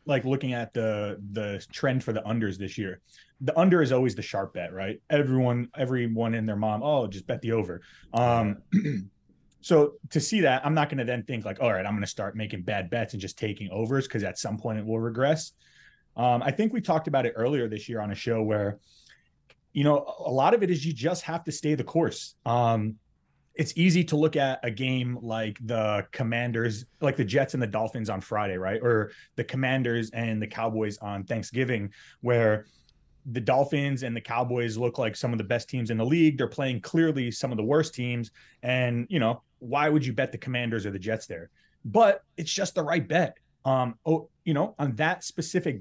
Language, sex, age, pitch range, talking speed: English, male, 30-49, 110-155 Hz, 220 wpm